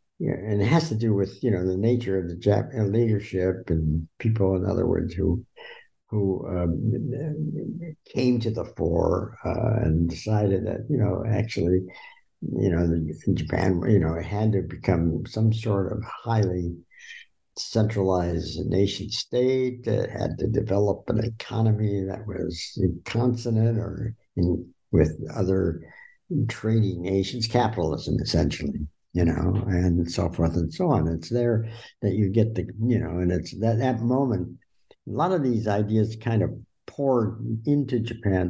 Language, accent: English, American